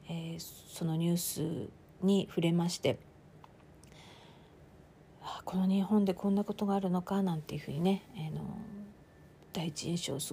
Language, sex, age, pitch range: Japanese, female, 40-59, 165-200 Hz